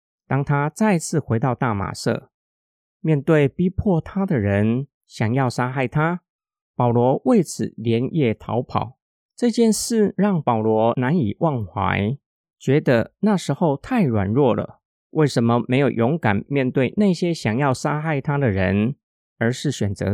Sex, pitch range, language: male, 115-175 Hz, Chinese